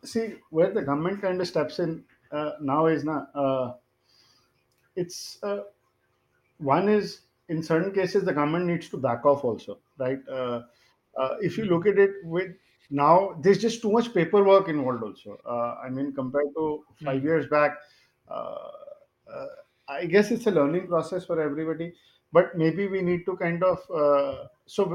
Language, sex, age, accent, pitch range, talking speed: English, male, 50-69, Indian, 145-190 Hz, 170 wpm